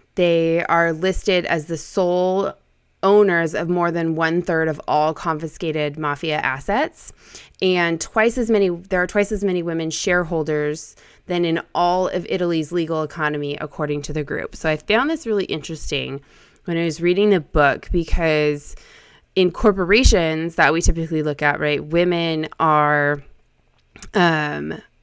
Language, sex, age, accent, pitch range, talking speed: English, female, 20-39, American, 150-175 Hz, 150 wpm